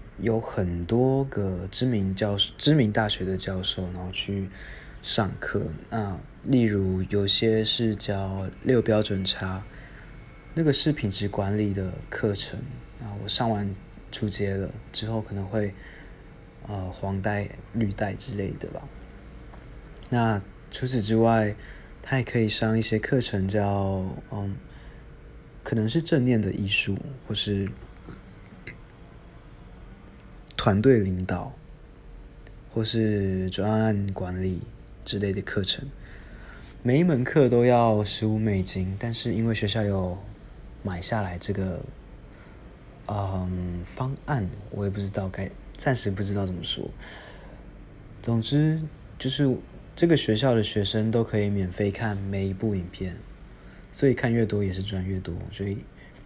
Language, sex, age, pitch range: Chinese, male, 20-39, 95-115 Hz